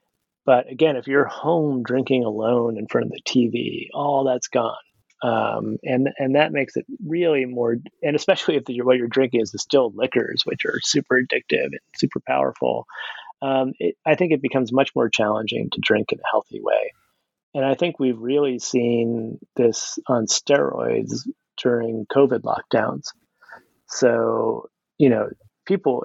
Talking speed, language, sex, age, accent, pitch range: 165 wpm, English, male, 30-49, American, 115-150 Hz